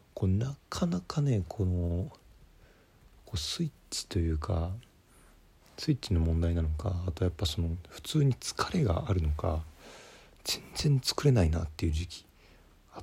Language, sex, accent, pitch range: Japanese, male, native, 85-105 Hz